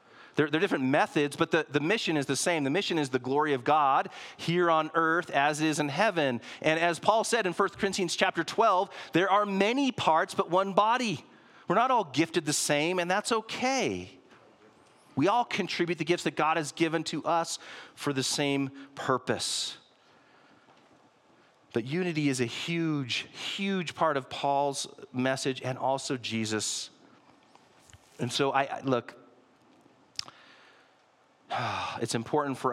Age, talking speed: 40-59, 160 wpm